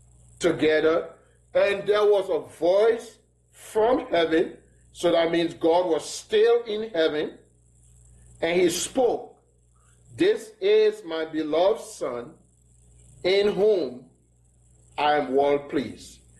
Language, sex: English, male